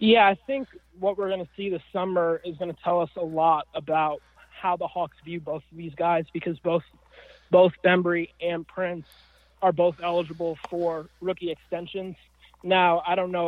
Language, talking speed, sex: English, 185 wpm, male